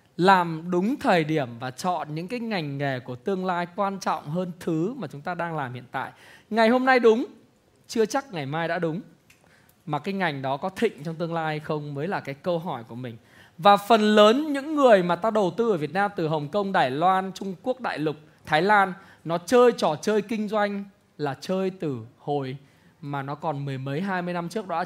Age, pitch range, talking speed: 20-39, 130-200 Hz, 230 wpm